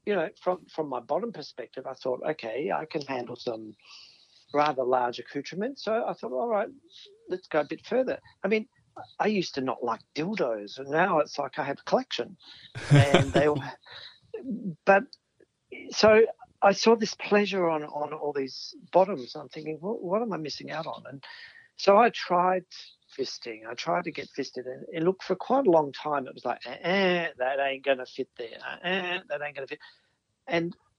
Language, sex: English, male